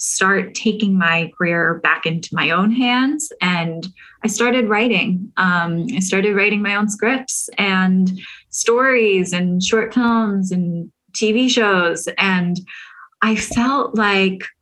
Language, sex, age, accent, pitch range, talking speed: English, female, 20-39, American, 180-220 Hz, 130 wpm